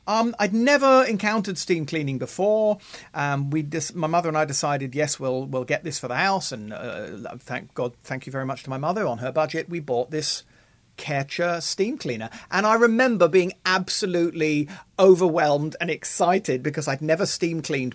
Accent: British